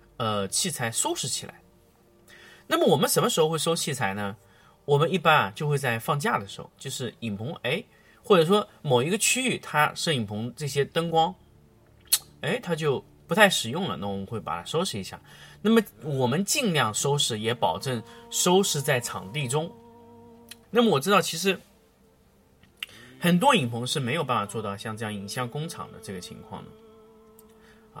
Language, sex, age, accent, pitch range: Chinese, male, 30-49, native, 110-175 Hz